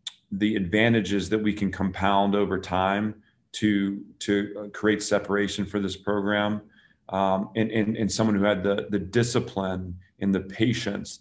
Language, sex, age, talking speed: English, male, 40-59, 150 wpm